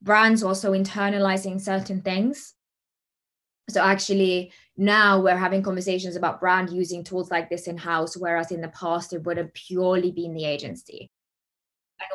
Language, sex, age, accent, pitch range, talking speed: English, female, 20-39, British, 170-190 Hz, 150 wpm